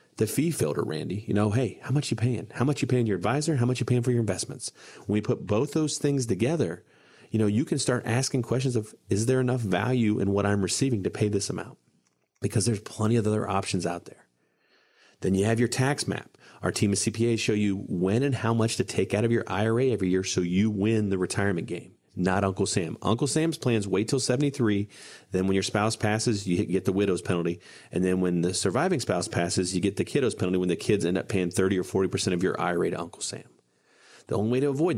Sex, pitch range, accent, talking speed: male, 95-120 Hz, American, 240 wpm